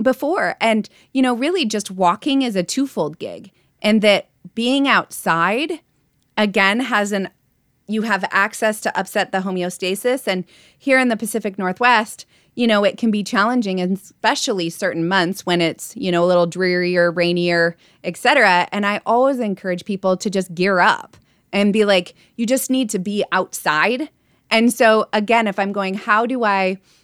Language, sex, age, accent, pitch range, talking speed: English, female, 20-39, American, 180-220 Hz, 170 wpm